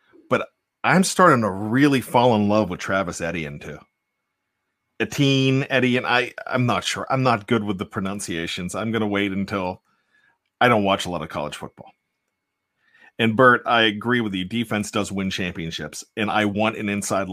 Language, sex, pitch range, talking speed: English, male, 105-135 Hz, 185 wpm